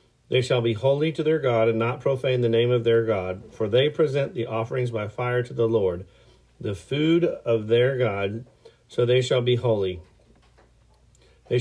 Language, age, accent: English, 40-59, American